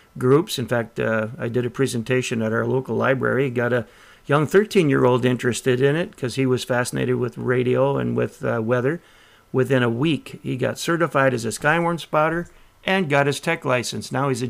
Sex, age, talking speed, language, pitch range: male, 50-69, 195 wpm, English, 120-140 Hz